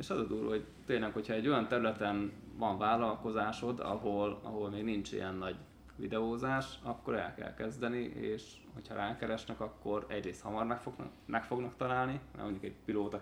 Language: Hungarian